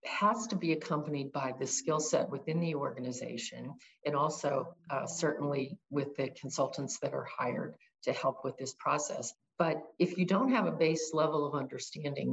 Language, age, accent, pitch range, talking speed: English, 50-69, American, 140-175 Hz, 175 wpm